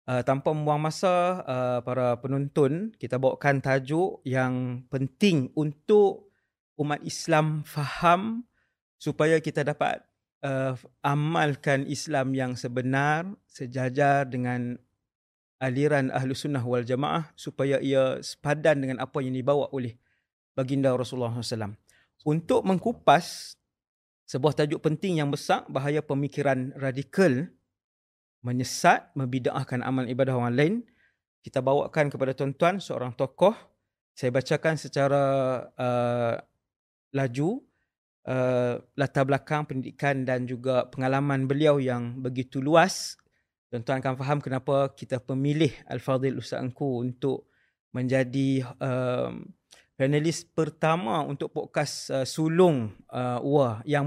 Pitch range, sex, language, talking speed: 130-150 Hz, male, English, 110 wpm